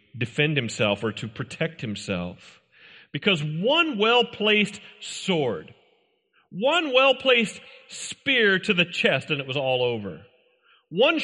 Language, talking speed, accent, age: English, 115 wpm, American, 40-59